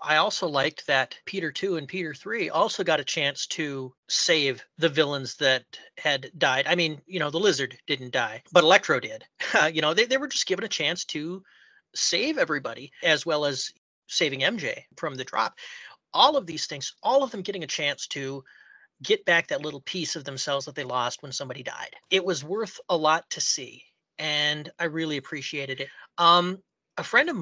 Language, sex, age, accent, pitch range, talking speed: English, male, 40-59, American, 140-175 Hz, 200 wpm